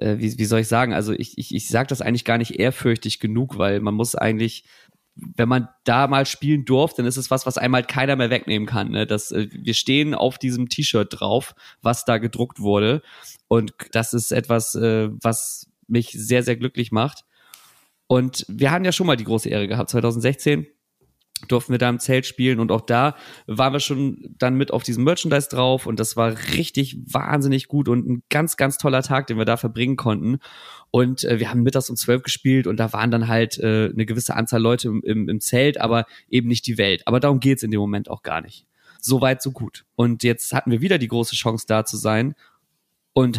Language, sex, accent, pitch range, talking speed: German, male, German, 115-130 Hz, 215 wpm